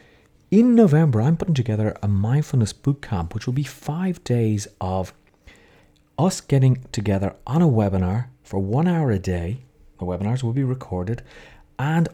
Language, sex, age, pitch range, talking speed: English, male, 30-49, 95-140 Hz, 155 wpm